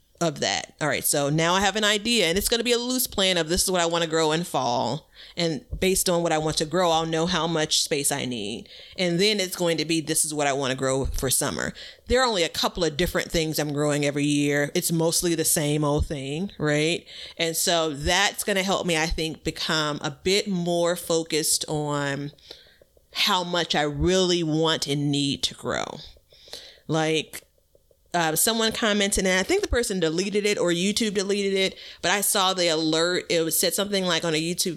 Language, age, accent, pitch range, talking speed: English, 30-49, American, 155-195 Hz, 225 wpm